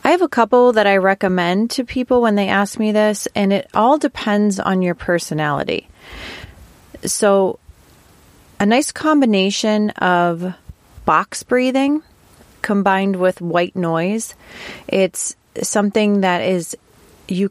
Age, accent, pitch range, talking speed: 30-49, American, 175-215 Hz, 125 wpm